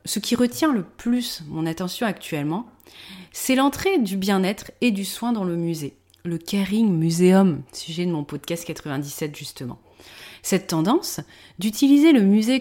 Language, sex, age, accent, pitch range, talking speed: French, female, 30-49, French, 155-230 Hz, 150 wpm